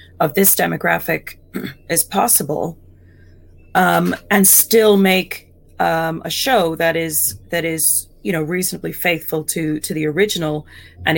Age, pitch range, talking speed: 30-49, 135-185 Hz, 135 wpm